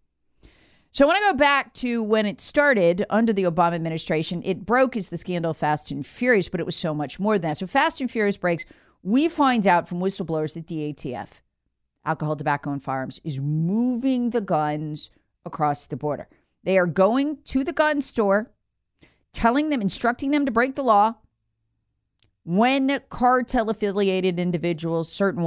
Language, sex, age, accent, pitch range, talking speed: English, female, 40-59, American, 150-230 Hz, 170 wpm